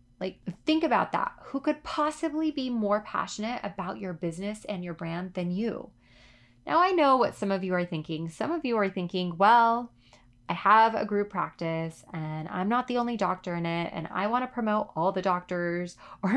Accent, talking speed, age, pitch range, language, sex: American, 200 wpm, 20-39, 170-215 Hz, English, female